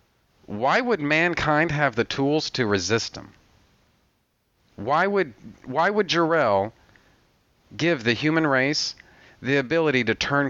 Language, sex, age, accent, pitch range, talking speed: English, male, 40-59, American, 115-170 Hz, 125 wpm